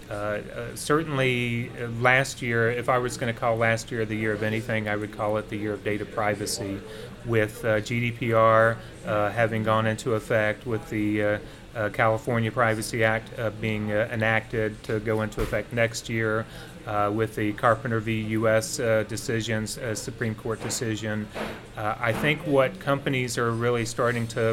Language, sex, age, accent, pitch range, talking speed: English, male, 30-49, American, 110-120 Hz, 175 wpm